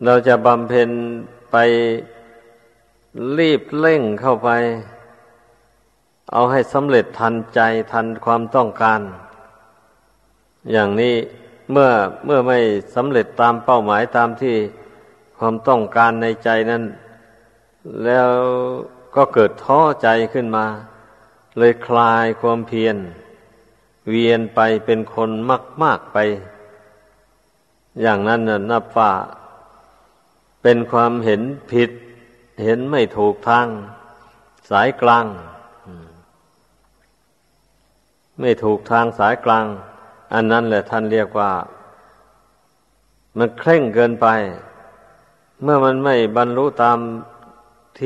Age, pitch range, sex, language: 50-69, 110-120 Hz, male, Thai